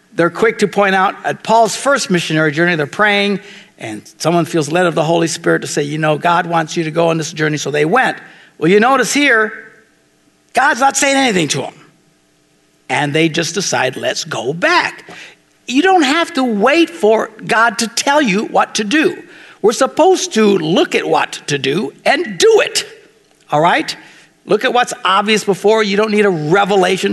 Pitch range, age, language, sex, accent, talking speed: 155-230 Hz, 60-79, English, male, American, 195 wpm